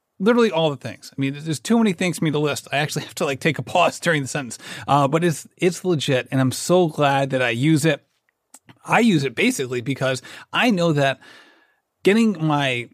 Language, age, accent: English, 30-49, American